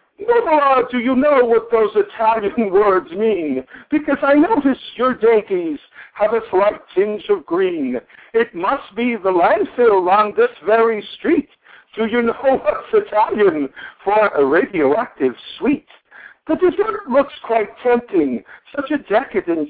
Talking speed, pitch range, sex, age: 140 wpm, 220-320 Hz, male, 60-79